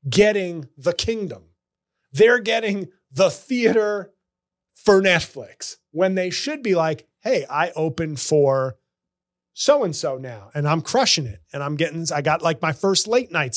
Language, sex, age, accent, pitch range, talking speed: English, male, 30-49, American, 145-200 Hz, 150 wpm